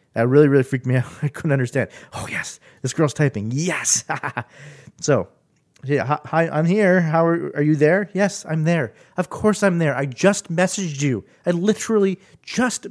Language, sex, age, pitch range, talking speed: English, male, 30-49, 120-180 Hz, 185 wpm